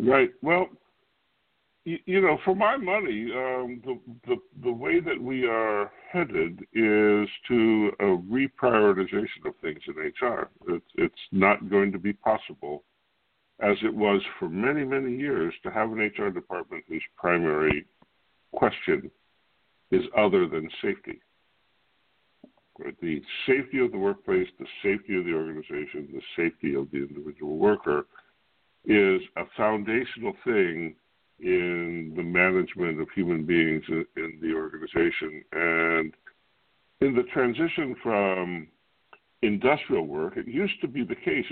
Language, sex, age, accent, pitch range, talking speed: English, female, 60-79, American, 85-130 Hz, 135 wpm